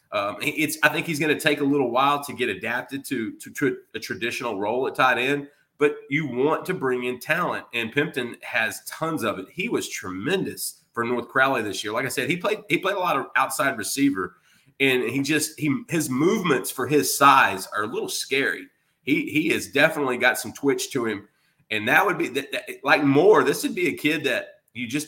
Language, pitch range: English, 125-160 Hz